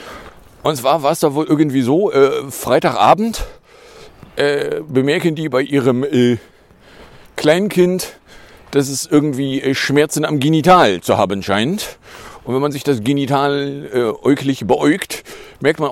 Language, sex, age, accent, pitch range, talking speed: German, male, 40-59, German, 125-155 Hz, 145 wpm